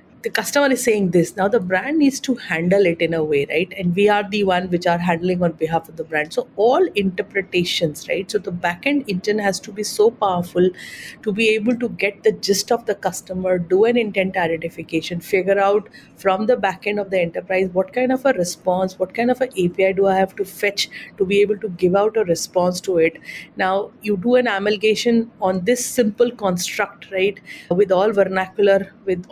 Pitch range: 185-215 Hz